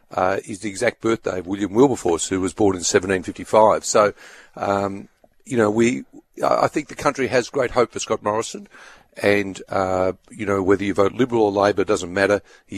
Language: English